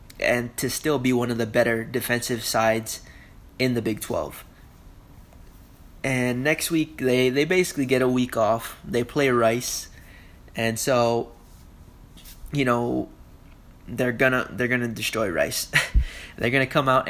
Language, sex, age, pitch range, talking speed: English, male, 20-39, 110-130 Hz, 145 wpm